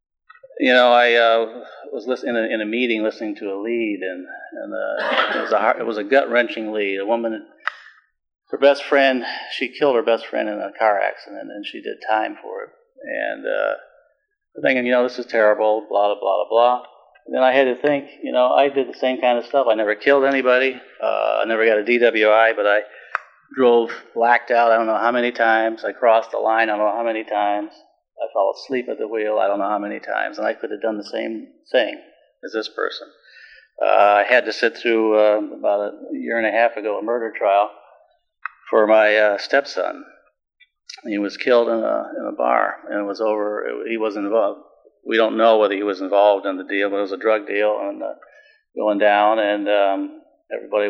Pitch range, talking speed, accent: 105-130 Hz, 220 wpm, American